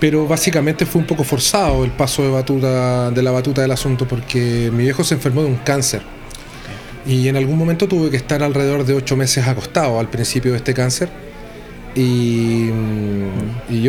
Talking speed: 180 wpm